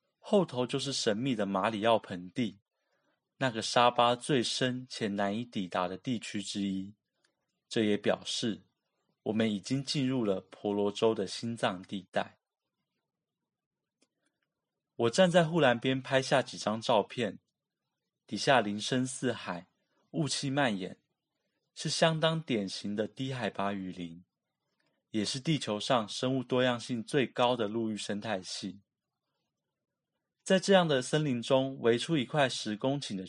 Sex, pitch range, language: male, 105-140 Hz, Chinese